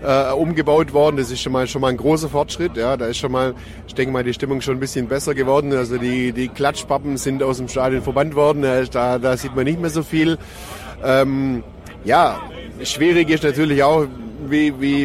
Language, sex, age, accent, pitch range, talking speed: German, male, 30-49, German, 120-140 Hz, 210 wpm